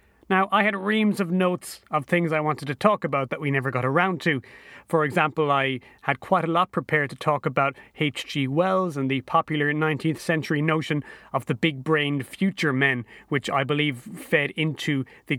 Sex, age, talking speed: male, 30-49, 190 wpm